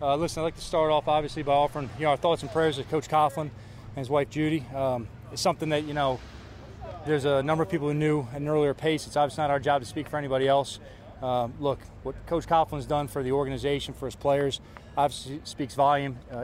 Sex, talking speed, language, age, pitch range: male, 235 wpm, English, 20-39, 125-150 Hz